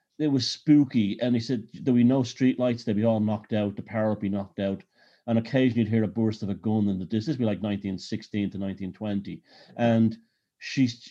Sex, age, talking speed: male, 40-59, 230 wpm